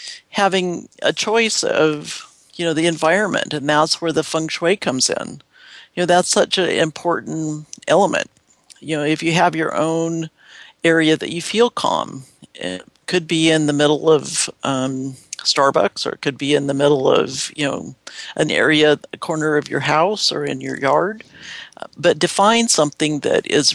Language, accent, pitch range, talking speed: English, American, 145-170 Hz, 175 wpm